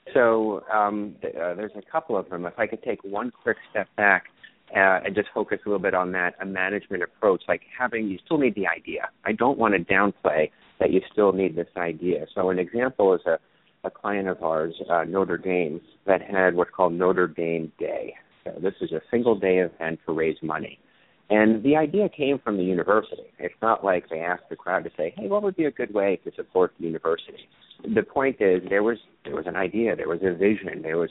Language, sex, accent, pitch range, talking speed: English, male, American, 90-115 Hz, 230 wpm